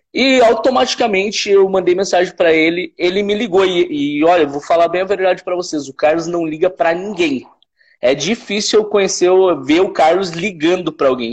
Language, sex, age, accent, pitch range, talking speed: Portuguese, male, 20-39, Brazilian, 160-215 Hz, 200 wpm